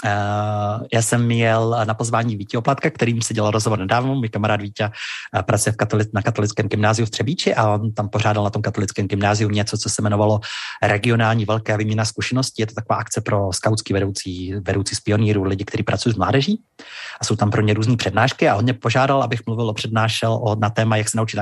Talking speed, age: 215 wpm, 30-49